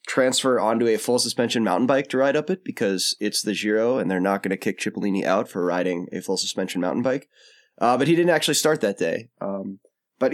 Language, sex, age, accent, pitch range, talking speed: English, male, 20-39, American, 105-140 Hz, 220 wpm